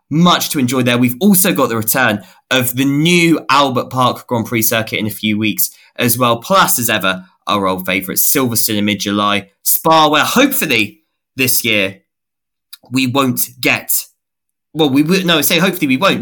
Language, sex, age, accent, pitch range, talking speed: English, male, 20-39, British, 105-155 Hz, 180 wpm